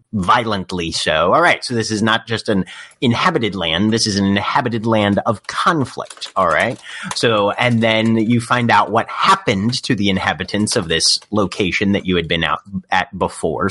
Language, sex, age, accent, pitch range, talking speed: English, male, 30-49, American, 100-125 Hz, 185 wpm